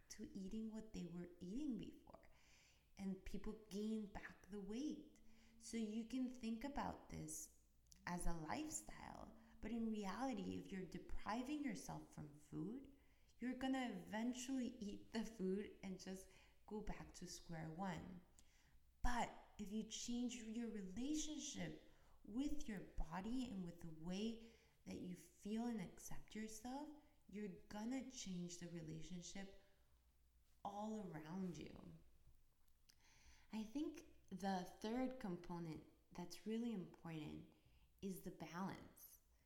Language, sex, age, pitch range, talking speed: English, female, 20-39, 160-230 Hz, 125 wpm